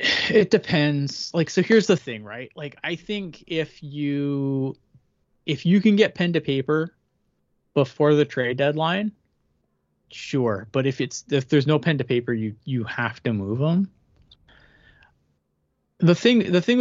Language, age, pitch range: English, 20-39, 125-160 Hz